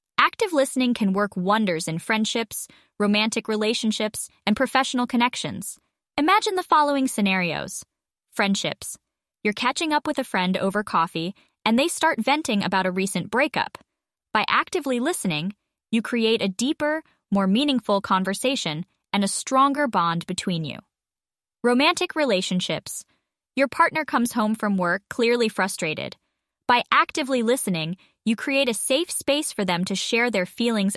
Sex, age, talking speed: female, 10-29, 140 wpm